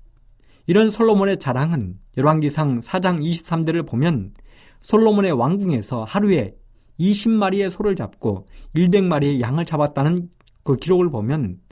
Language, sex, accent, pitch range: Korean, male, native, 110-175 Hz